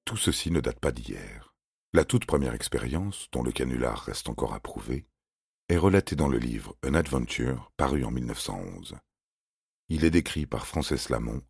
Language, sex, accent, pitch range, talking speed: French, male, French, 65-85 Hz, 185 wpm